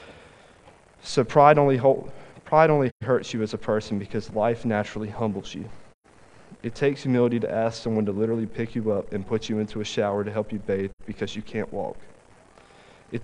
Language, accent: English, American